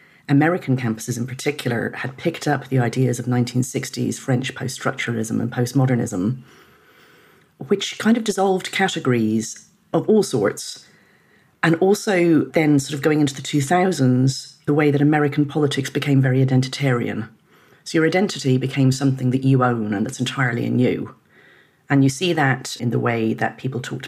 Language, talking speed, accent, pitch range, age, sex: English, 155 wpm, British, 125-150 Hz, 40-59, female